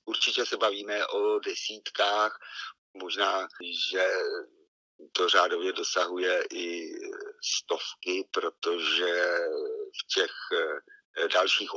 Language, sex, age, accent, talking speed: Czech, male, 50-69, native, 80 wpm